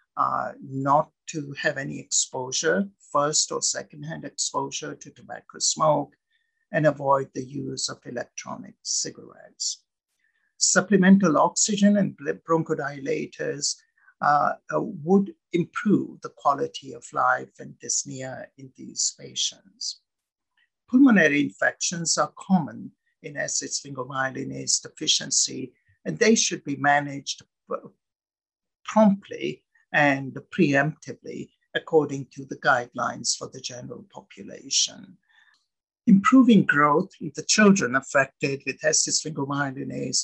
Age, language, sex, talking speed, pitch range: 60-79, English, male, 100 wpm, 140-200 Hz